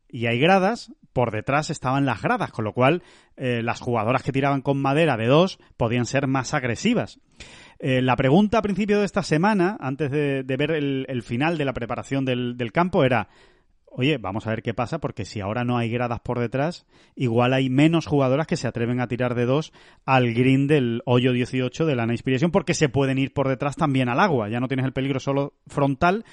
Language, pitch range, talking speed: Spanish, 120-150 Hz, 215 wpm